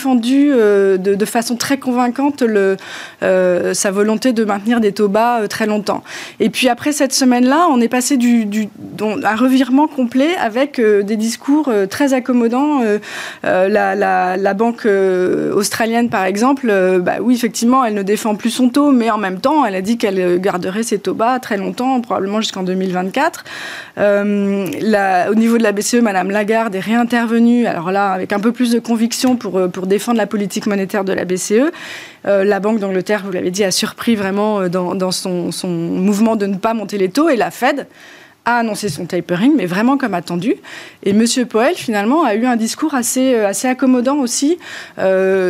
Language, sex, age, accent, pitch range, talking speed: French, female, 20-39, French, 190-240 Hz, 195 wpm